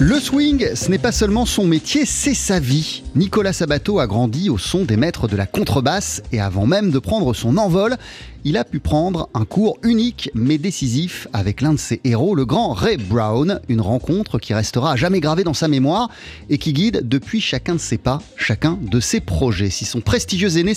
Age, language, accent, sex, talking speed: 30-49, French, French, male, 210 wpm